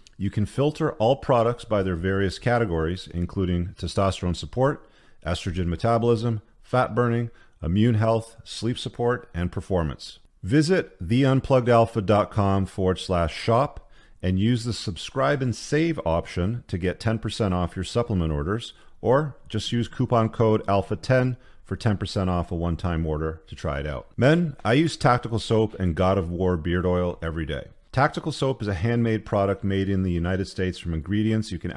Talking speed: 160 wpm